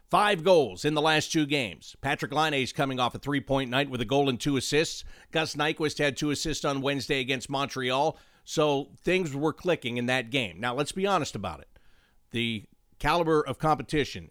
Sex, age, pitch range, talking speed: male, 50-69, 115-150 Hz, 195 wpm